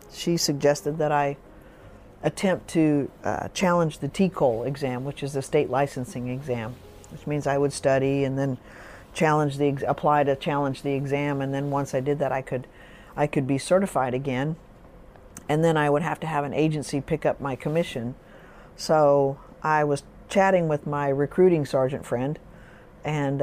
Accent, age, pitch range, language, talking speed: American, 50-69, 135-160 Hz, English, 170 wpm